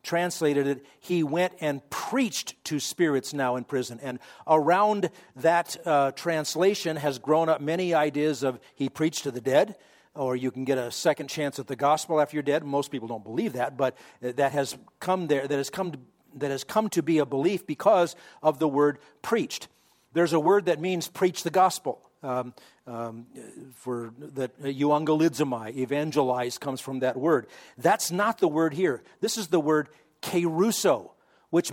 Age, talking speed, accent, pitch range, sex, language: 50-69, 180 wpm, American, 140-175 Hz, male, English